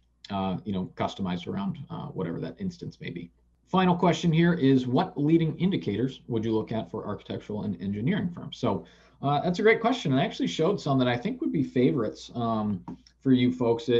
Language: English